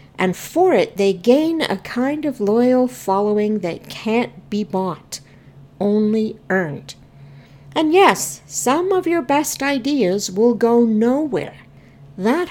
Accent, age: American, 60-79